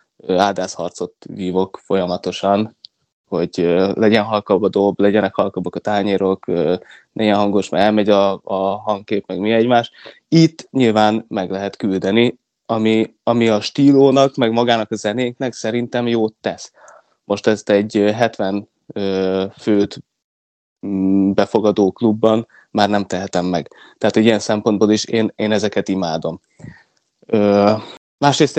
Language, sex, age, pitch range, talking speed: Hungarian, male, 20-39, 100-115 Hz, 120 wpm